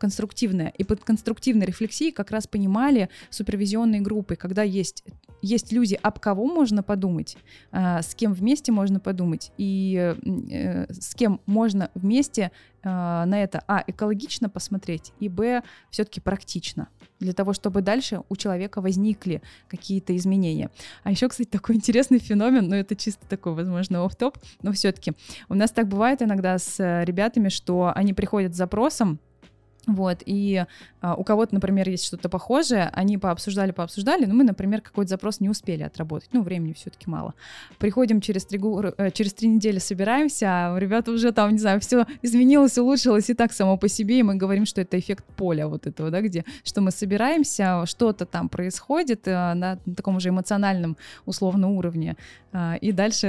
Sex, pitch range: female, 185-220 Hz